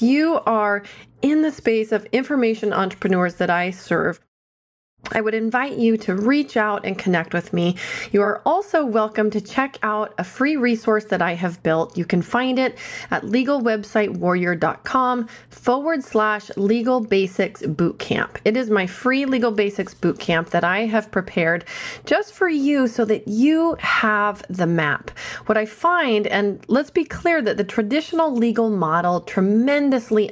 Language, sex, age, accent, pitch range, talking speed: English, female, 30-49, American, 185-250 Hz, 160 wpm